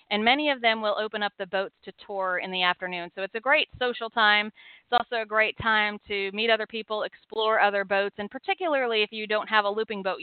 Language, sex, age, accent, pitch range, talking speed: English, female, 40-59, American, 185-225 Hz, 240 wpm